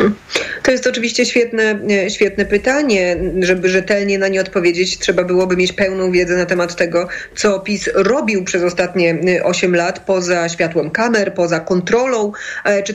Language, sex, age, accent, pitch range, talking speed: Polish, female, 30-49, native, 175-205 Hz, 150 wpm